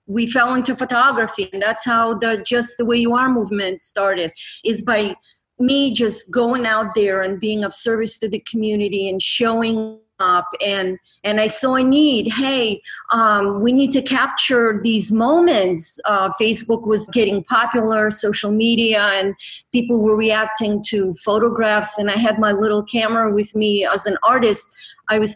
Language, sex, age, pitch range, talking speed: English, female, 30-49, 210-240 Hz, 170 wpm